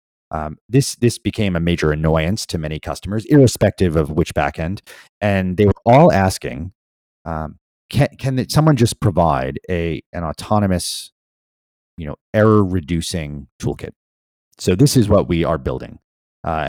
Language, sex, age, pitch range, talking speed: English, male, 30-49, 75-105 Hz, 150 wpm